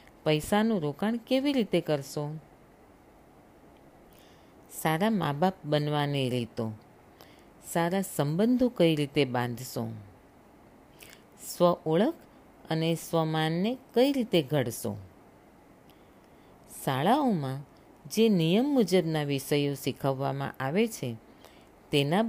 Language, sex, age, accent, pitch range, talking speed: Gujarati, female, 40-59, native, 140-220 Hz, 85 wpm